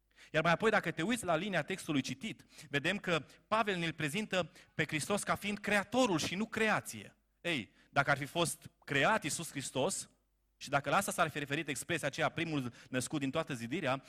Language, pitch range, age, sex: Romanian, 125-170 Hz, 30-49, male